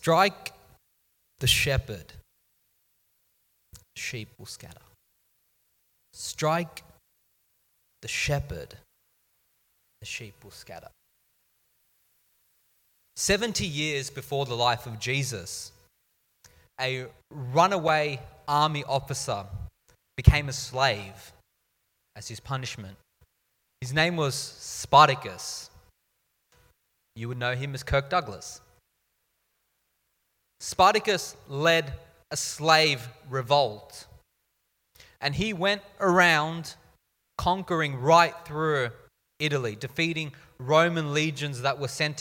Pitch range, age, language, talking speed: 125-165 Hz, 30-49, English, 85 wpm